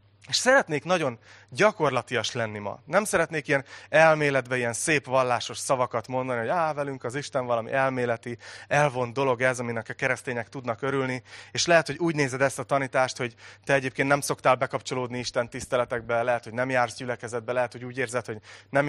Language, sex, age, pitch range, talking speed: Hungarian, male, 30-49, 115-140 Hz, 180 wpm